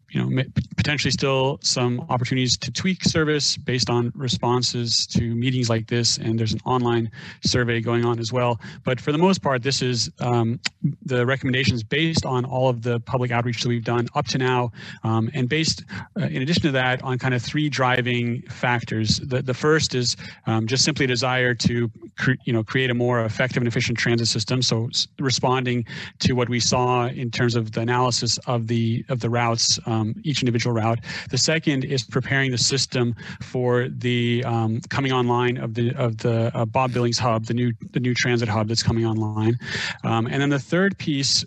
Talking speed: 200 wpm